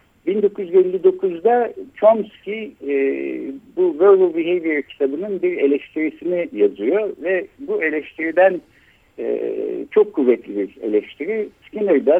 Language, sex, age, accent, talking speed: Turkish, male, 60-79, native, 95 wpm